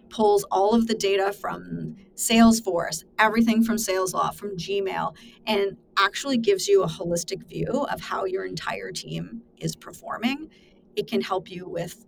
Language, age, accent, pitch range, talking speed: English, 30-49, American, 190-230 Hz, 160 wpm